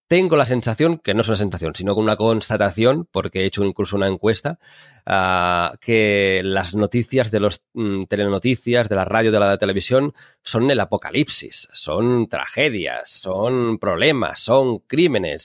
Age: 30-49